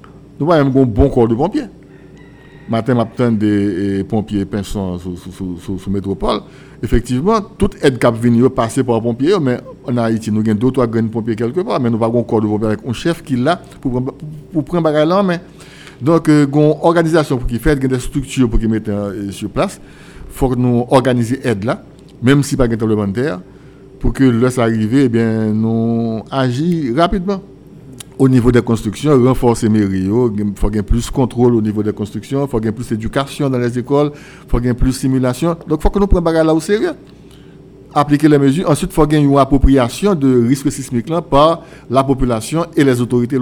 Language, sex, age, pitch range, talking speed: French, male, 60-79, 110-145 Hz, 205 wpm